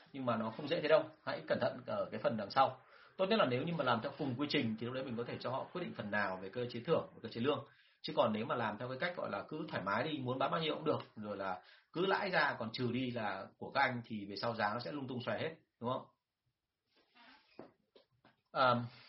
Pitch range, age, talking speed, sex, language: 115-145 Hz, 30-49, 285 wpm, male, Vietnamese